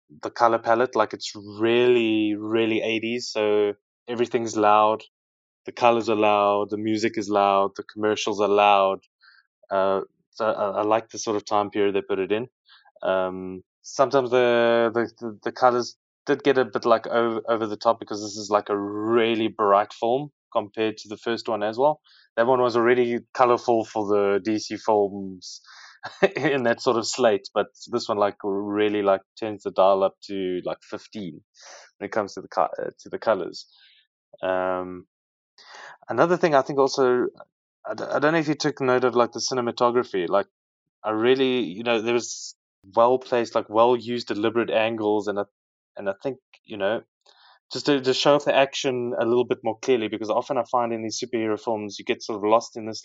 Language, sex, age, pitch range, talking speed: English, male, 20-39, 105-120 Hz, 190 wpm